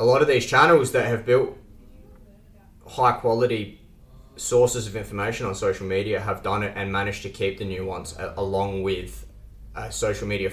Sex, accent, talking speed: male, Australian, 175 wpm